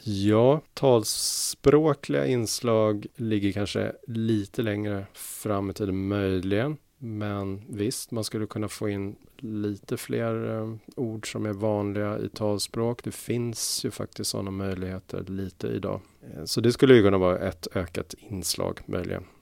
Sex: male